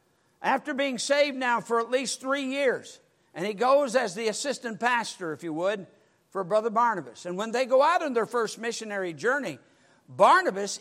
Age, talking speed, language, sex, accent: 60-79, 185 wpm, English, male, American